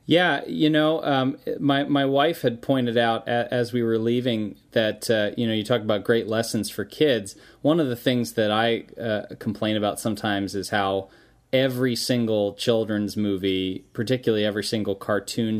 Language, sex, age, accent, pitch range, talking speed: English, male, 30-49, American, 100-125 Hz, 175 wpm